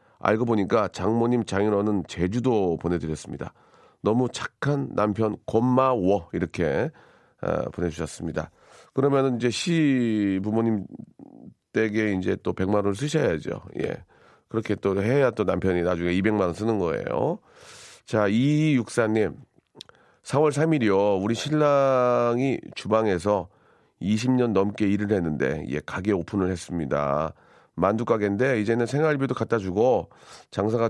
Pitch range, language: 95-125 Hz, Korean